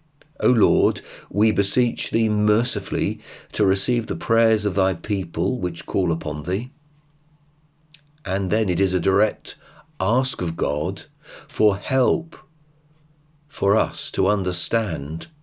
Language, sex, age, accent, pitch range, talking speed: English, male, 40-59, British, 90-145 Hz, 125 wpm